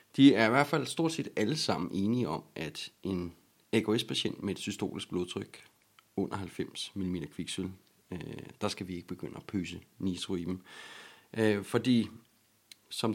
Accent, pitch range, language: native, 90-110 Hz, Danish